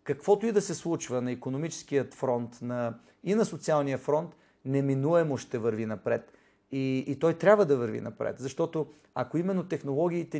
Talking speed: 160 wpm